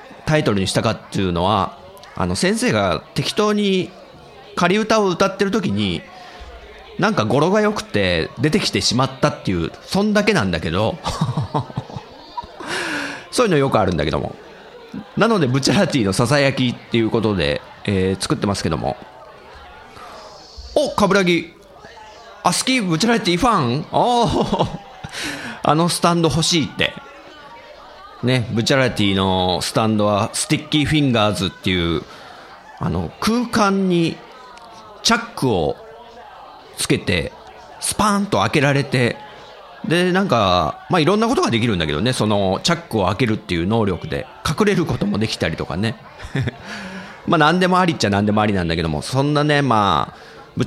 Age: 40-59